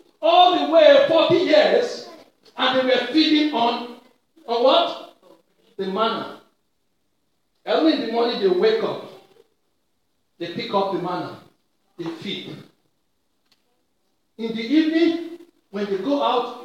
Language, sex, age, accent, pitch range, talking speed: English, male, 50-69, Nigerian, 235-320 Hz, 125 wpm